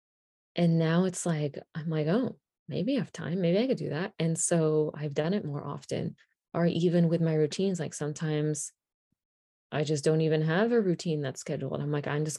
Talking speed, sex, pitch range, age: 210 wpm, female, 150-175 Hz, 20-39